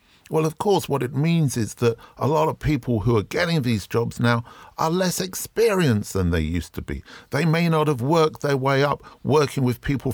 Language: English